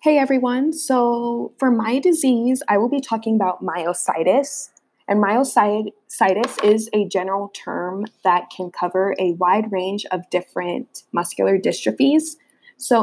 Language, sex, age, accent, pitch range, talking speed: English, female, 20-39, American, 195-260 Hz, 135 wpm